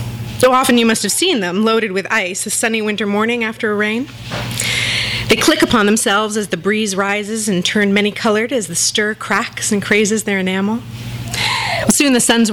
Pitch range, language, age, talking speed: 165-235 Hz, English, 30-49, 185 wpm